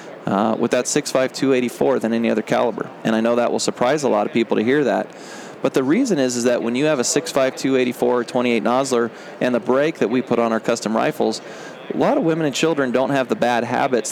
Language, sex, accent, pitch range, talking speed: English, male, American, 110-130 Hz, 240 wpm